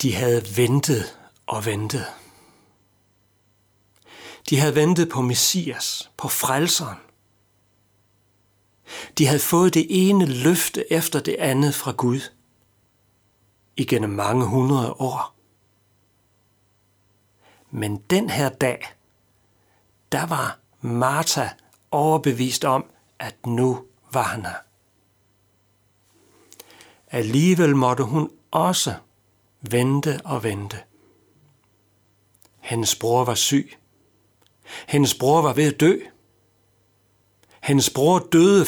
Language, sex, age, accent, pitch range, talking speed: Danish, male, 60-79, native, 100-140 Hz, 95 wpm